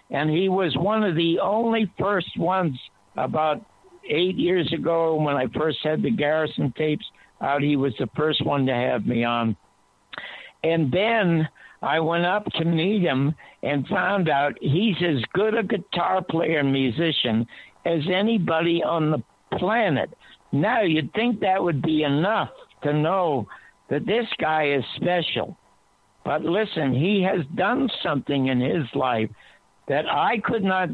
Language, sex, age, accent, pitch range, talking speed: English, male, 60-79, American, 140-185 Hz, 155 wpm